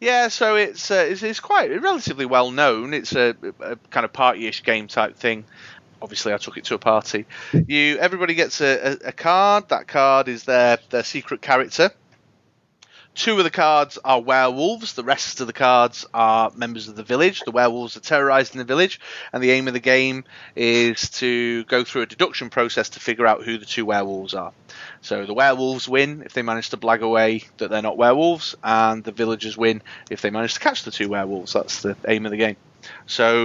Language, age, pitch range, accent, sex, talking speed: English, 30-49, 110-130 Hz, British, male, 210 wpm